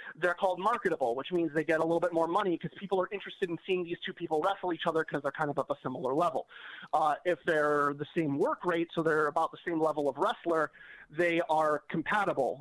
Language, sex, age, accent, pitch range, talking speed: English, male, 30-49, American, 150-185 Hz, 240 wpm